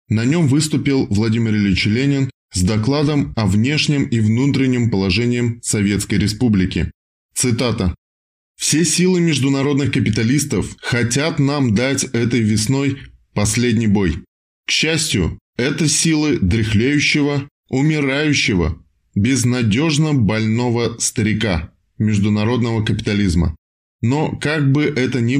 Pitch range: 105-140 Hz